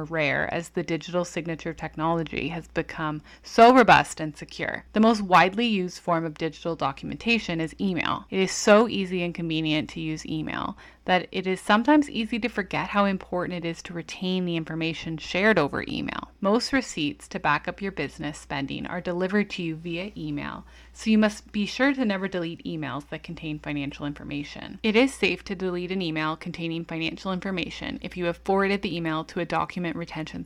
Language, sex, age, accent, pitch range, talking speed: English, female, 20-39, American, 160-195 Hz, 190 wpm